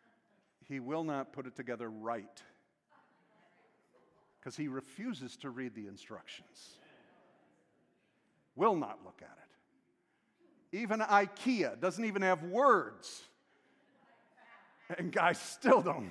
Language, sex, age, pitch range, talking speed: English, male, 50-69, 160-240 Hz, 110 wpm